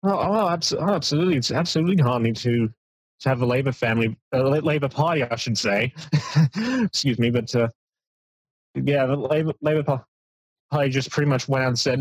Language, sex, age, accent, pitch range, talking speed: English, male, 20-39, American, 115-140 Hz, 175 wpm